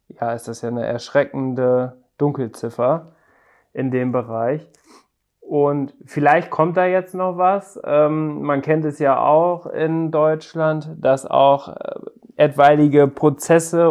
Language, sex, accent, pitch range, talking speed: German, male, German, 130-160 Hz, 120 wpm